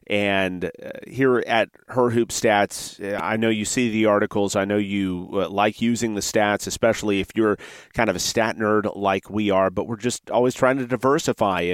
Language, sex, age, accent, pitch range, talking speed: English, male, 30-49, American, 100-120 Hz, 190 wpm